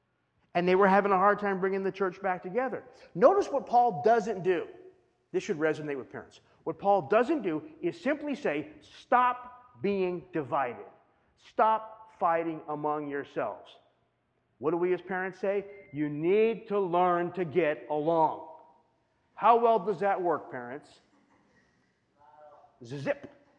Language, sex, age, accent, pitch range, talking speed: English, male, 40-59, American, 140-215 Hz, 140 wpm